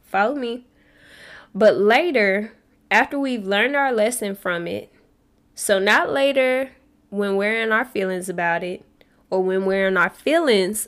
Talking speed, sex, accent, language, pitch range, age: 150 wpm, female, American, English, 190-225 Hz, 10-29